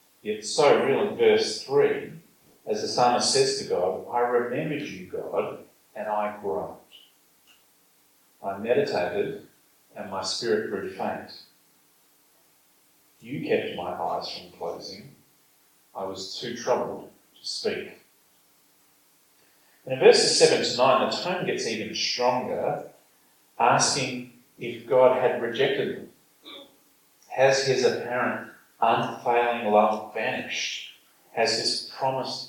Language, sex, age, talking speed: English, male, 40-59, 120 wpm